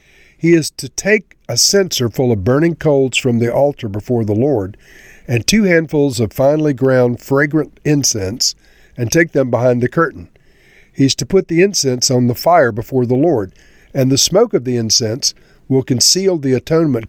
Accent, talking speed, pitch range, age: American, 185 wpm, 120-165 Hz, 50-69